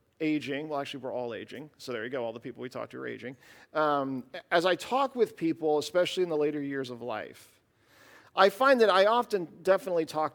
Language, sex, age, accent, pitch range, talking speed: English, male, 40-59, American, 145-195 Hz, 220 wpm